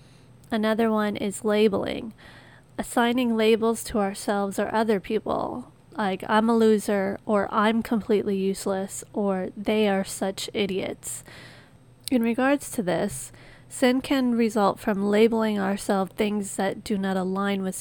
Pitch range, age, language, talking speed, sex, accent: 190-225 Hz, 30-49, English, 135 wpm, female, American